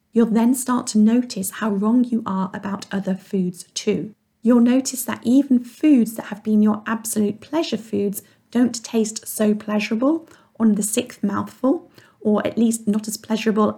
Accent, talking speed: British, 170 wpm